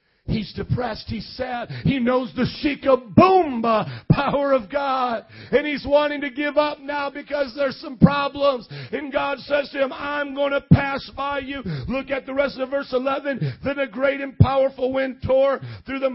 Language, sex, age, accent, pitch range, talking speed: English, male, 40-59, American, 230-275 Hz, 185 wpm